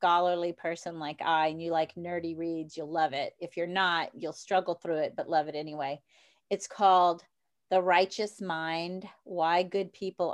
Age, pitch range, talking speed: 40-59, 165-200 Hz, 180 wpm